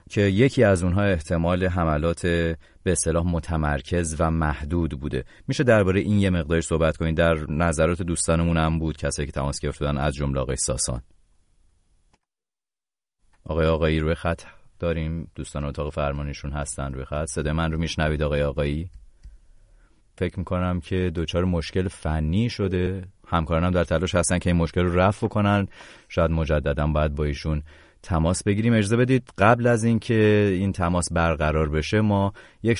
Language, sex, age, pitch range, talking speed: English, male, 30-49, 75-95 Hz, 155 wpm